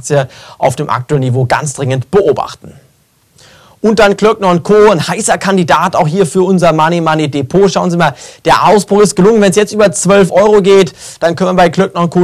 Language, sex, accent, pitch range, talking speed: German, male, German, 140-175 Hz, 200 wpm